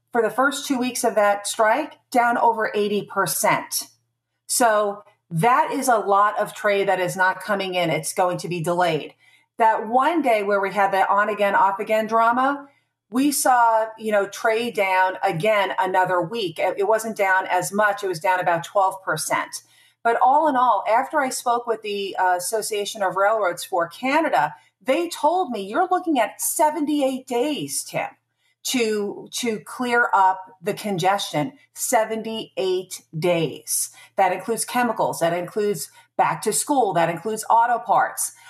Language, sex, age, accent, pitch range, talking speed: English, female, 40-59, American, 185-235 Hz, 155 wpm